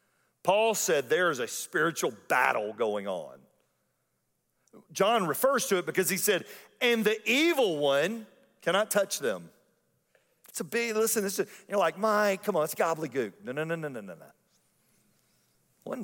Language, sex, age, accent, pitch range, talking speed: English, male, 50-69, American, 135-210 Hz, 165 wpm